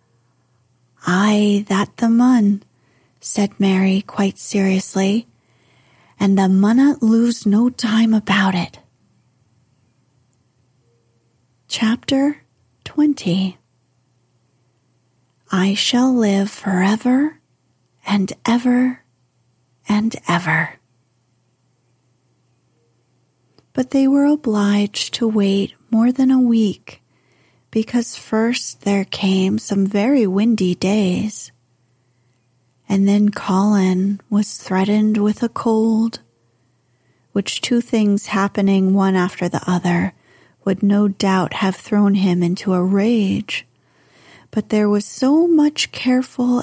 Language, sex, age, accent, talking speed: English, female, 30-49, American, 95 wpm